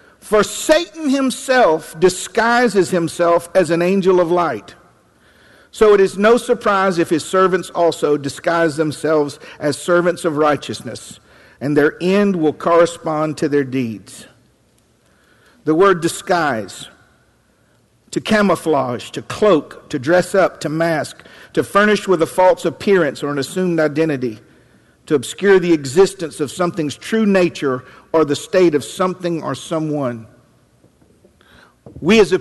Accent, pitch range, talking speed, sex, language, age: American, 145-190 Hz, 135 wpm, male, English, 50-69